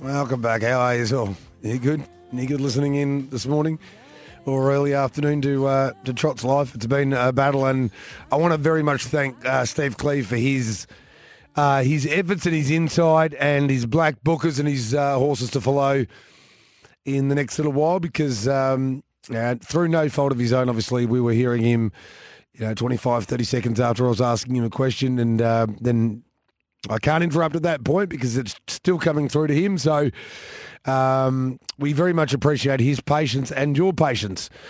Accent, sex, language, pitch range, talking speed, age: Australian, male, English, 125-145 Hz, 200 wpm, 30-49